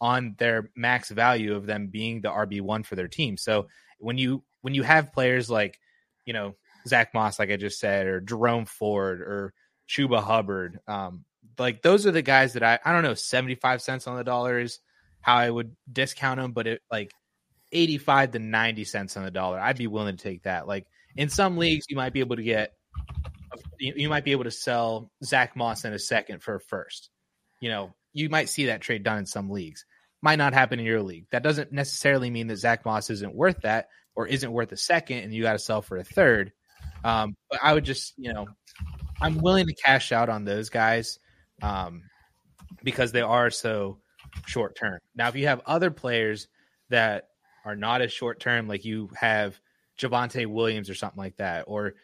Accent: American